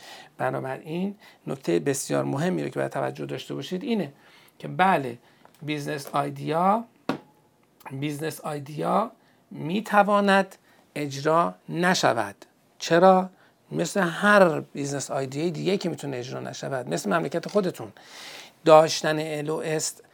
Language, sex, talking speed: Persian, male, 105 wpm